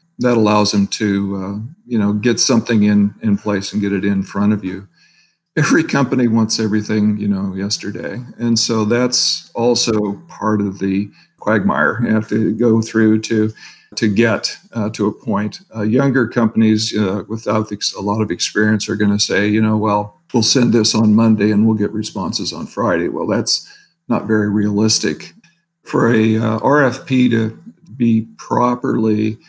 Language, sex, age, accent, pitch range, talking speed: English, male, 50-69, American, 105-120 Hz, 175 wpm